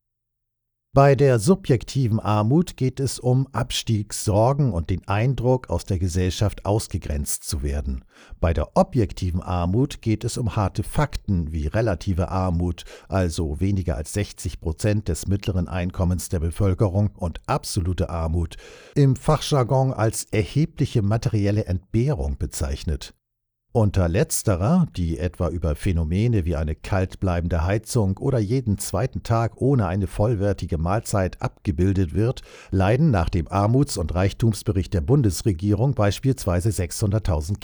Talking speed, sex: 125 wpm, male